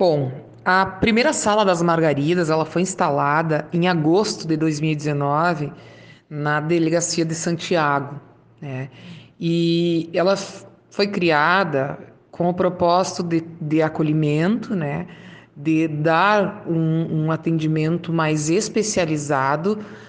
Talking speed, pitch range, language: 110 wpm, 155-185 Hz, Portuguese